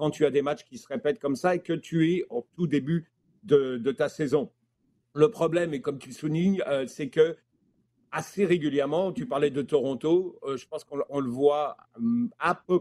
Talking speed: 195 wpm